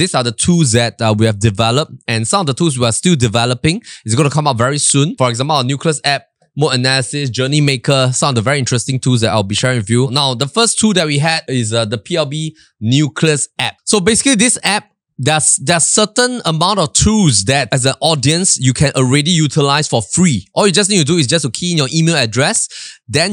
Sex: male